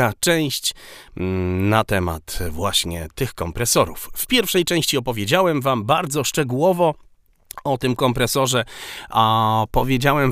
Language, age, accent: Polish, 40-59, native